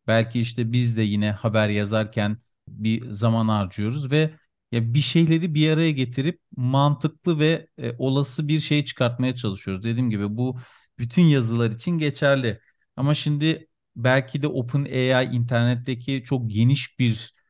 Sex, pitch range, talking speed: male, 115-130 Hz, 140 wpm